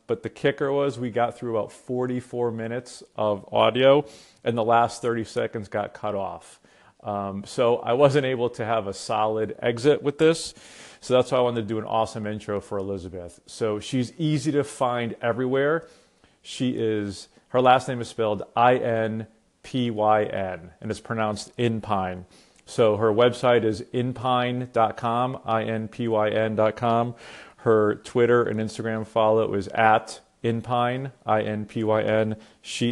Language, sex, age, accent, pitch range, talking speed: English, male, 40-59, American, 105-120 Hz, 140 wpm